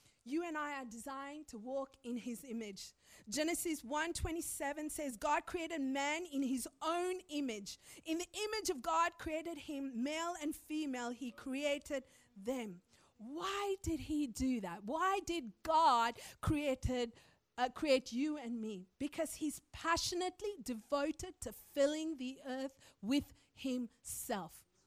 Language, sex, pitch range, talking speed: English, female, 270-365 Hz, 140 wpm